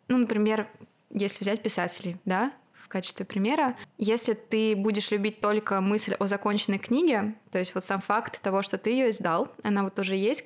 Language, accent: Russian, native